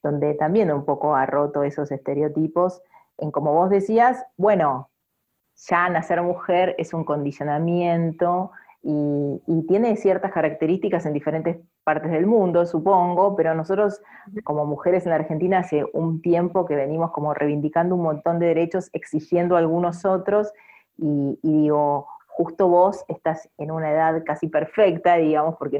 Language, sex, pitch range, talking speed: English, female, 155-190 Hz, 150 wpm